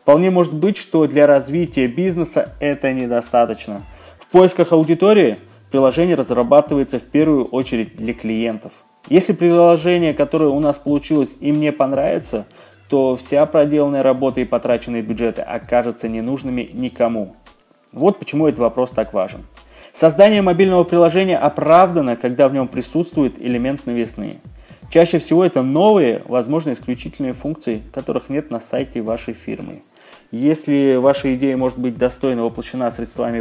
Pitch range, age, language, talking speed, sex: 120-155 Hz, 20-39, Russian, 135 wpm, male